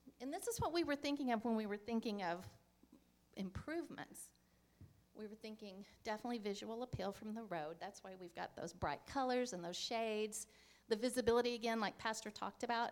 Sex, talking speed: female, 185 wpm